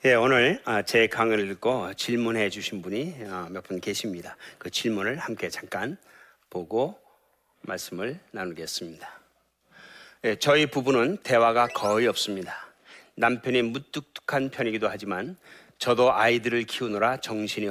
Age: 40-59